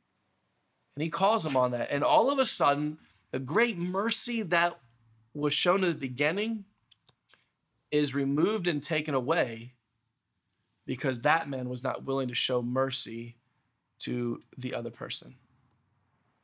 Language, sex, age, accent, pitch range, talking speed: English, male, 30-49, American, 125-185 Hz, 140 wpm